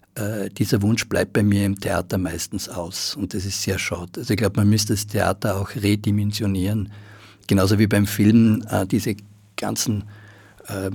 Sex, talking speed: male, 175 wpm